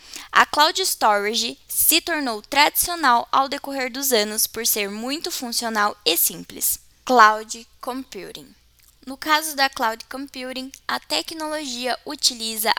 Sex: female